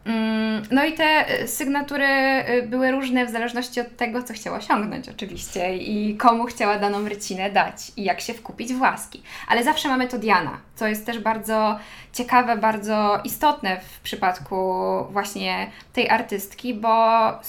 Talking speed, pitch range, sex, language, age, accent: 150 wpm, 215-260 Hz, female, Polish, 10-29, native